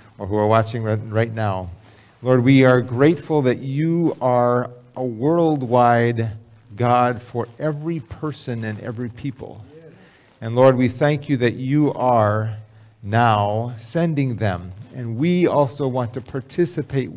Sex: male